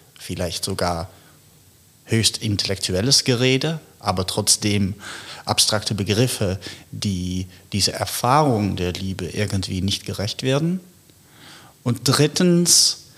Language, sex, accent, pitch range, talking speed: German, male, German, 95-120 Hz, 90 wpm